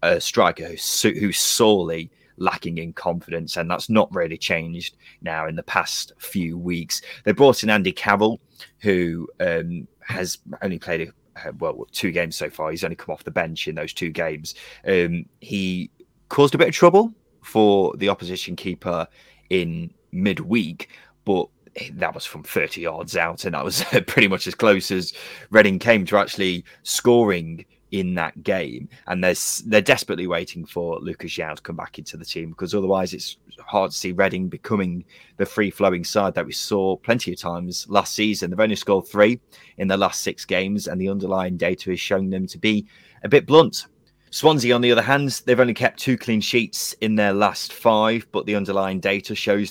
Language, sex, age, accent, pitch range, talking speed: English, male, 20-39, British, 90-110 Hz, 185 wpm